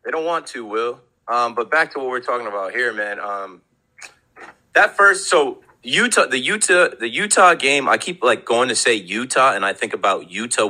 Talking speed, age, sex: 210 wpm, 30-49, male